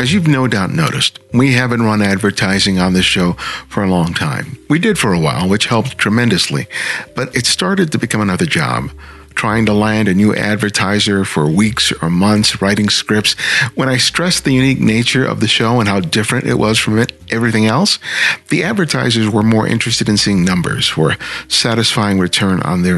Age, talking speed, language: 50-69, 190 wpm, English